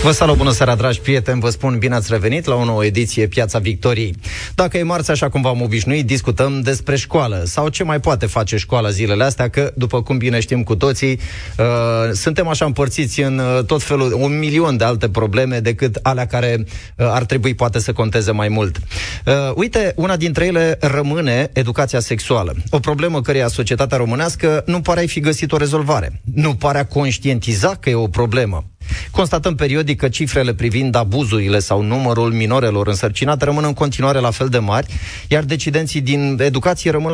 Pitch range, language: 115-145 Hz, Romanian